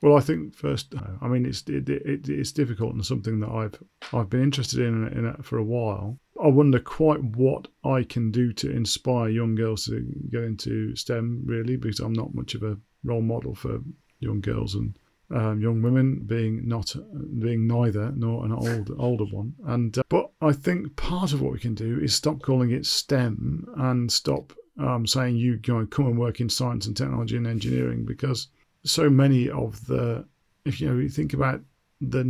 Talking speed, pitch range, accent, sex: 205 wpm, 110-130 Hz, British, male